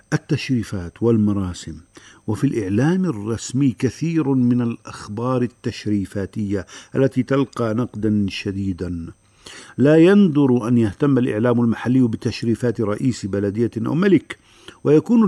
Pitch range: 100-130 Hz